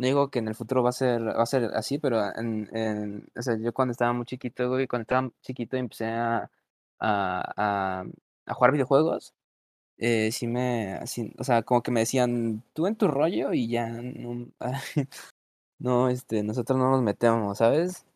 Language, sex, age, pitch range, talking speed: Spanish, male, 20-39, 110-135 Hz, 200 wpm